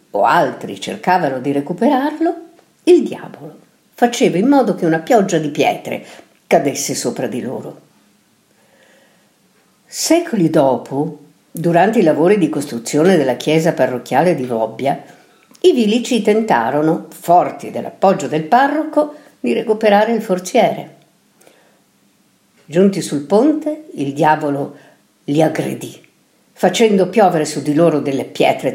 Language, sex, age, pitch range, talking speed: Italian, female, 50-69, 145-230 Hz, 115 wpm